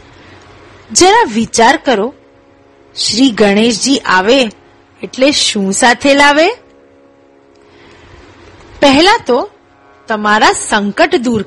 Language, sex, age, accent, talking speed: Gujarati, female, 30-49, native, 80 wpm